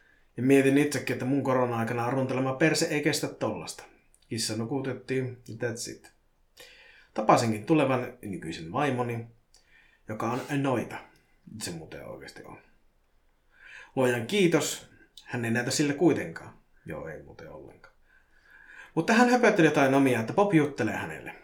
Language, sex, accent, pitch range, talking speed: Finnish, male, native, 120-165 Hz, 130 wpm